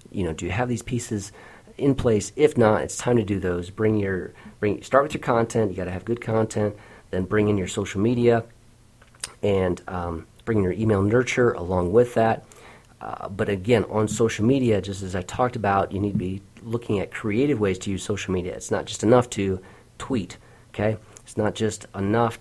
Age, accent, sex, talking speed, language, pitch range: 40-59, American, male, 210 wpm, English, 95-120 Hz